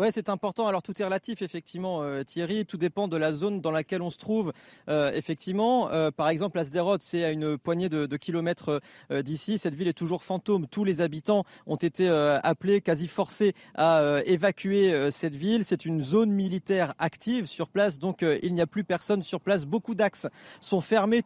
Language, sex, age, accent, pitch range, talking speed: French, male, 30-49, French, 165-205 Hz, 210 wpm